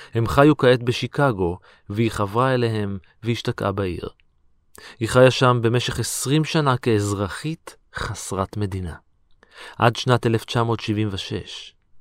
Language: Hebrew